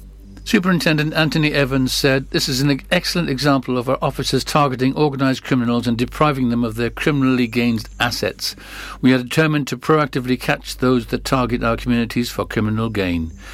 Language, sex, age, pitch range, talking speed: English, male, 60-79, 120-145 Hz, 165 wpm